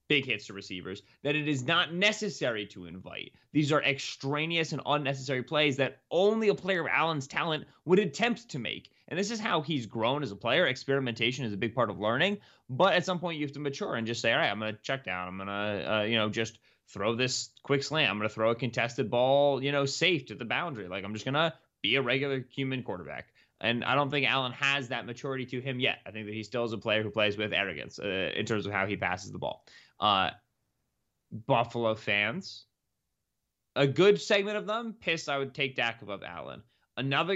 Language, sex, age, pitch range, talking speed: English, male, 20-39, 110-150 Hz, 230 wpm